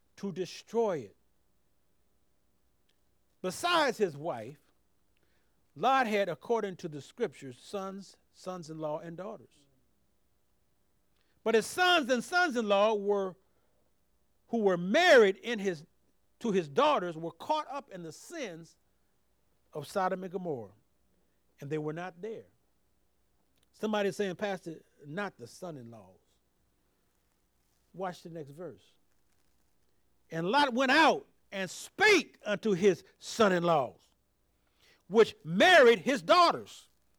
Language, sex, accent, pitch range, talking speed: English, male, American, 155-240 Hz, 115 wpm